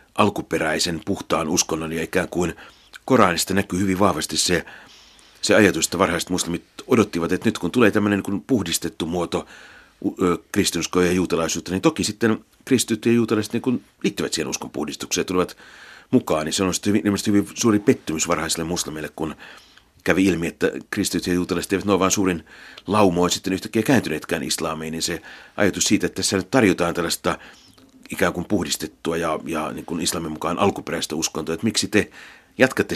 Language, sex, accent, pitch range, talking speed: Finnish, male, native, 85-100 Hz, 165 wpm